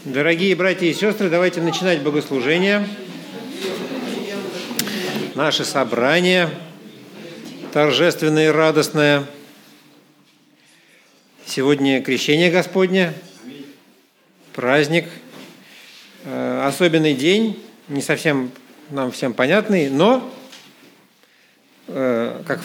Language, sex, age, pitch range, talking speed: Russian, male, 50-69, 140-190 Hz, 65 wpm